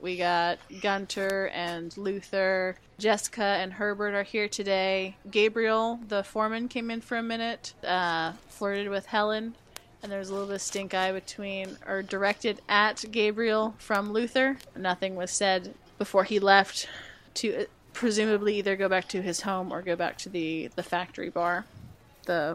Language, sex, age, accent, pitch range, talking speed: English, female, 20-39, American, 185-230 Hz, 165 wpm